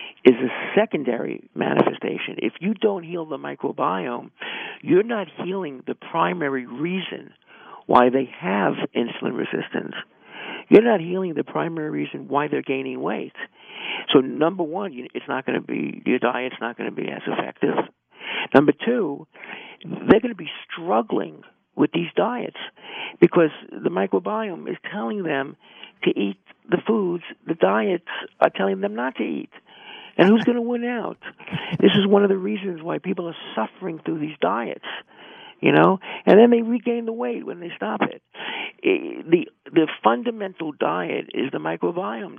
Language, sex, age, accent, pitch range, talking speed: English, male, 60-79, American, 140-215 Hz, 160 wpm